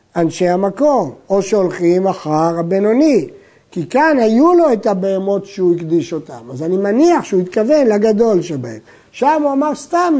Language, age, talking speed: Hebrew, 60-79, 155 wpm